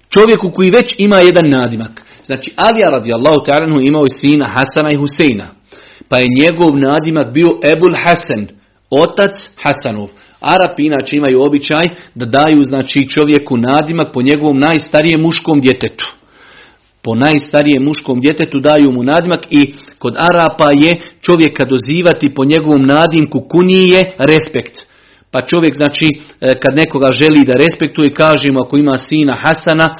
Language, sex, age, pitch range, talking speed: Croatian, male, 40-59, 140-175 Hz, 140 wpm